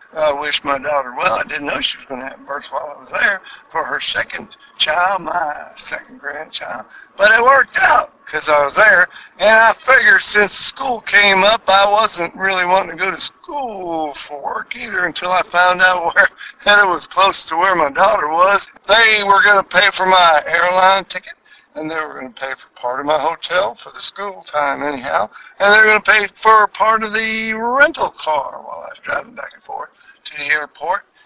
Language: English